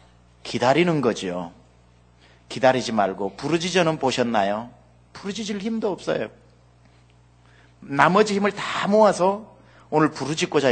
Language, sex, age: Korean, male, 40-59